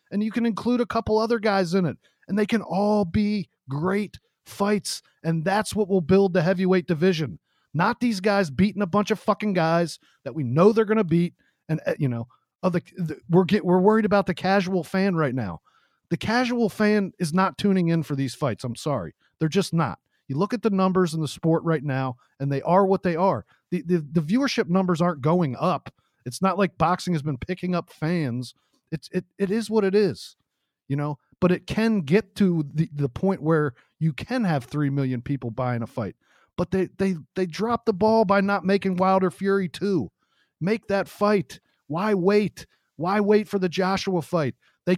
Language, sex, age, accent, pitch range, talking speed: English, male, 40-59, American, 160-200 Hz, 205 wpm